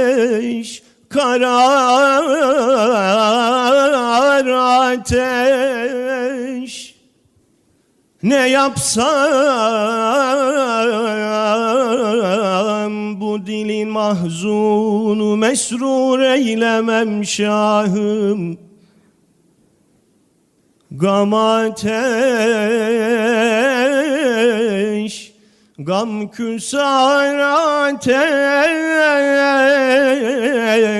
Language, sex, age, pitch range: Turkish, male, 40-59, 215-270 Hz